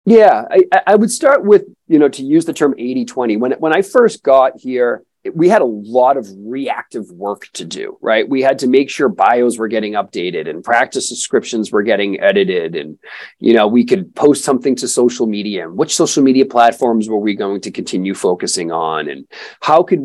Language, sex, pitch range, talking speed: English, male, 110-155 Hz, 210 wpm